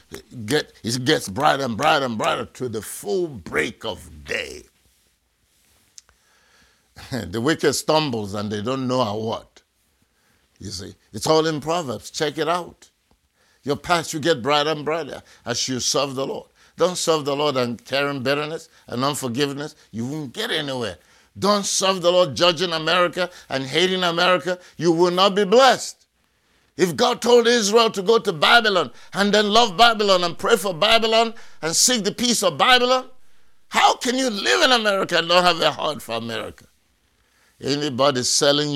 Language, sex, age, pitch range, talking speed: English, male, 60-79, 140-205 Hz, 165 wpm